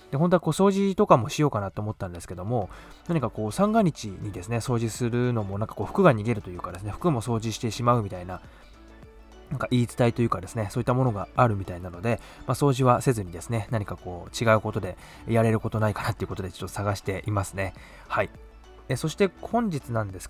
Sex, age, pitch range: male, 20-39, 105-135 Hz